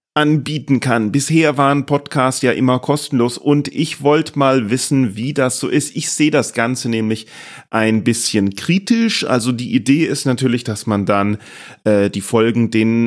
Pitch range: 125-155 Hz